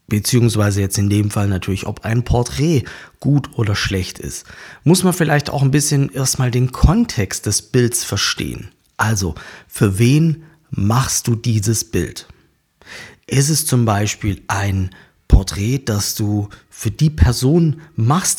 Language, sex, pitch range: German, male, 100-140 Hz